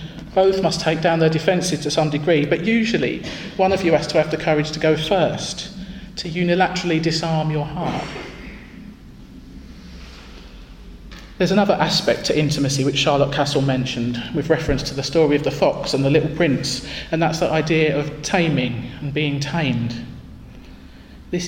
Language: English